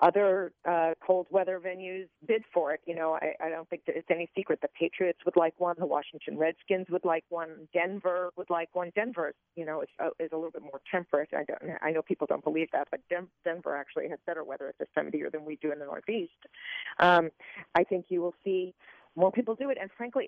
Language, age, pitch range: English, 40-59, 165-195 Hz